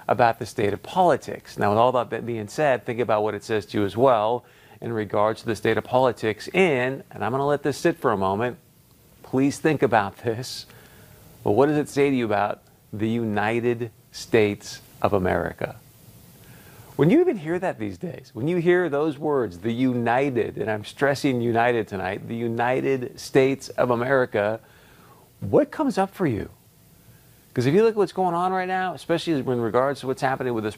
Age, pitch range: 40-59, 110-145 Hz